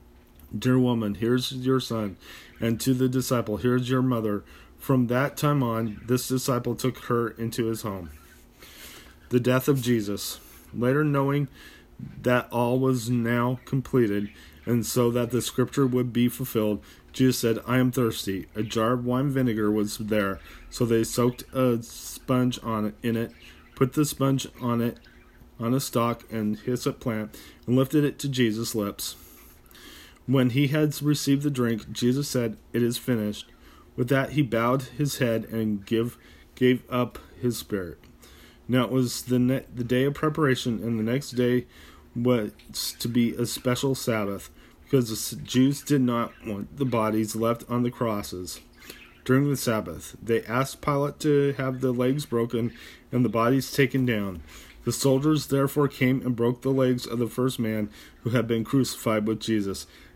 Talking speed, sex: 170 wpm, male